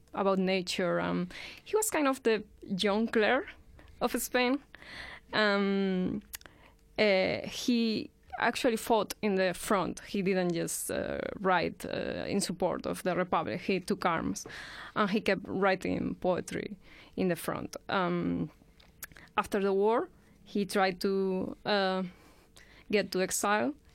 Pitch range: 185-225 Hz